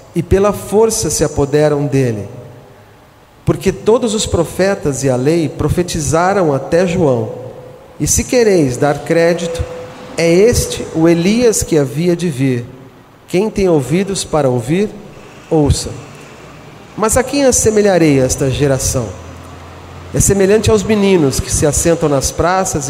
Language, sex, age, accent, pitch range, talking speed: Portuguese, male, 40-59, Brazilian, 135-180 Hz, 130 wpm